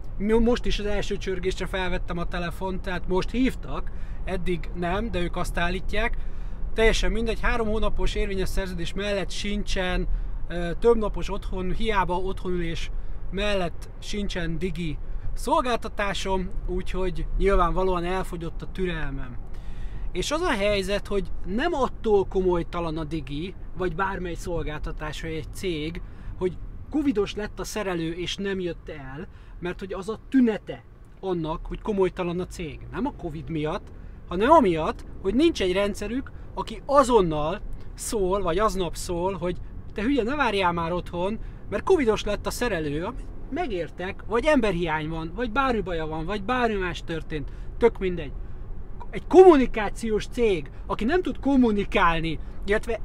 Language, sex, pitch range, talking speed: Hungarian, male, 175-215 Hz, 140 wpm